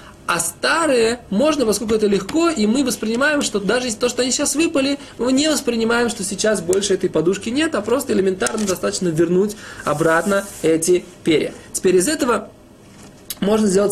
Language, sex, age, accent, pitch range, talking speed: Russian, male, 20-39, native, 170-220 Hz, 165 wpm